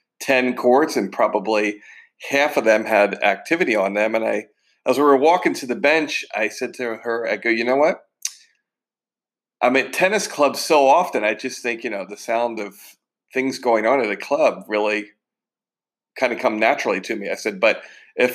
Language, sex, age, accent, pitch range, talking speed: English, male, 40-59, American, 115-145 Hz, 195 wpm